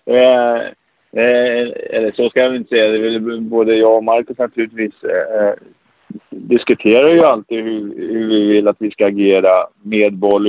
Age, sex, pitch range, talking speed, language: 30-49, male, 105-125 Hz, 165 wpm, Swedish